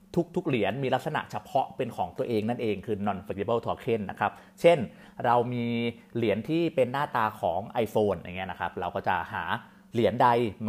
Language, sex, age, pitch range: Thai, male, 30-49, 105-155 Hz